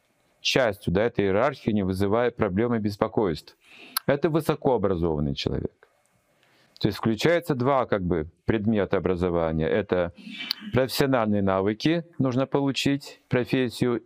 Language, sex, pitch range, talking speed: Russian, male, 95-140 Hz, 115 wpm